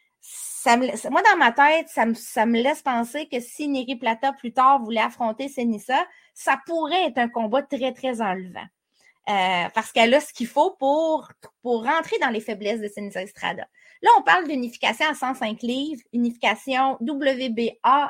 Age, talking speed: 30-49, 180 wpm